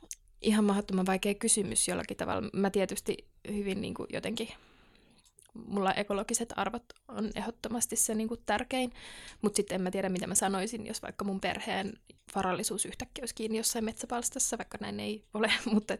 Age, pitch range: 20-39, 195-225 Hz